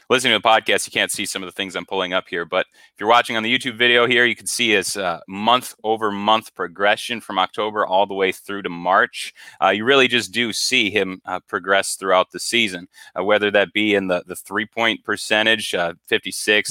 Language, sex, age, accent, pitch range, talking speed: English, male, 30-49, American, 100-125 Hz, 230 wpm